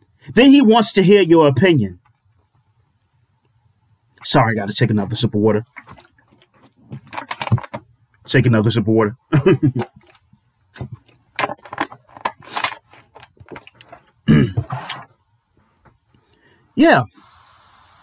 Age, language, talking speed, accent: 40-59, English, 60 wpm, American